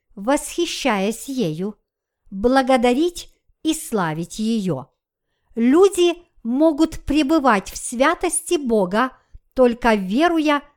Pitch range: 225-305 Hz